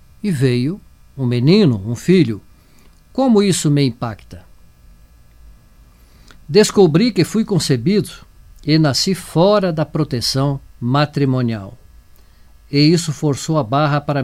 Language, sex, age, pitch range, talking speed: English, male, 50-69, 110-160 Hz, 110 wpm